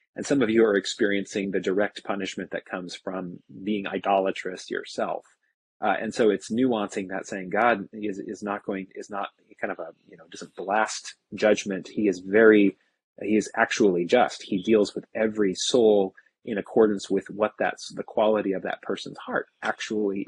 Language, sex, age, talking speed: English, male, 30-49, 185 wpm